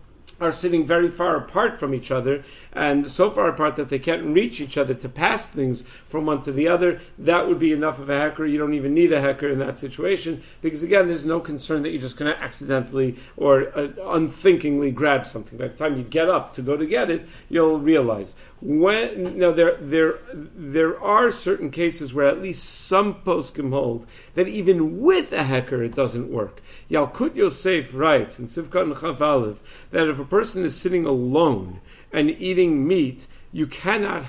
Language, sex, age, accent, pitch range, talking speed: English, male, 50-69, American, 135-170 Hz, 195 wpm